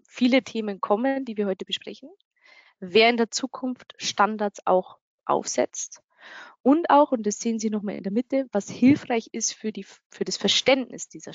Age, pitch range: 20-39, 195-250 Hz